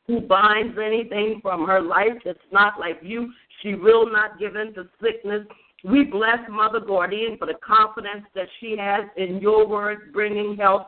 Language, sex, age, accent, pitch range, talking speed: English, female, 50-69, American, 190-225 Hz, 175 wpm